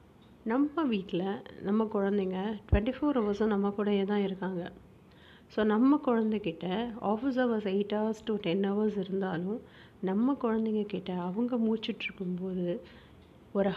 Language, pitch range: Tamil, 195-230 Hz